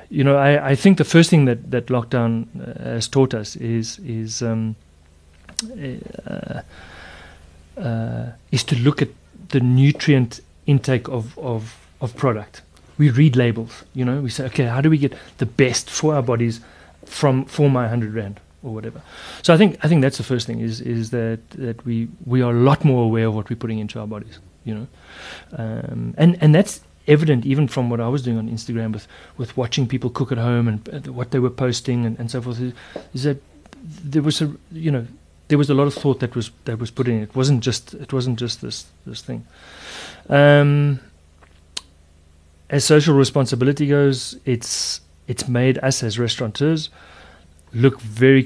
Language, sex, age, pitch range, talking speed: English, male, 30-49, 110-135 Hz, 190 wpm